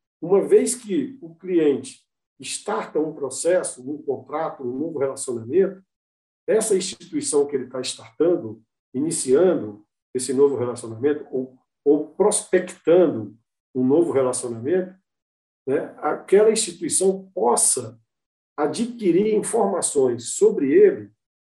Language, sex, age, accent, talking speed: Portuguese, male, 50-69, Brazilian, 100 wpm